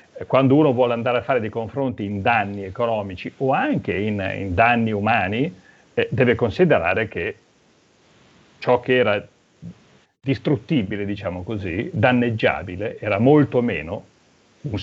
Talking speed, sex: 130 wpm, male